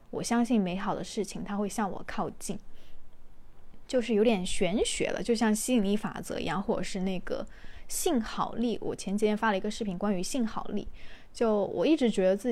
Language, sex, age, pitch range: Chinese, female, 20-39, 200-245 Hz